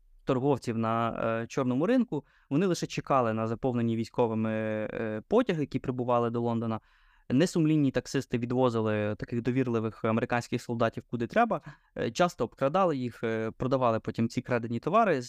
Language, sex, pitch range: Ukrainian, male, 120-140 Hz